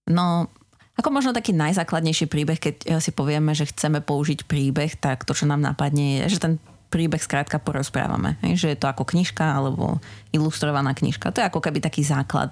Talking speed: 180 wpm